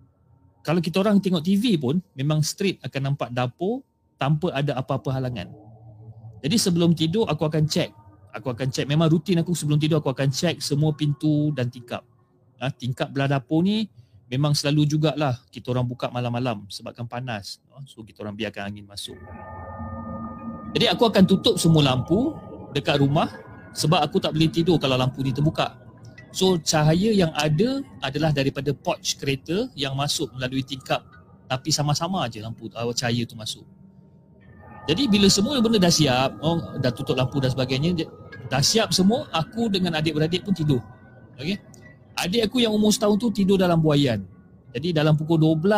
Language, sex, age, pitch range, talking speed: Malay, male, 40-59, 125-175 Hz, 165 wpm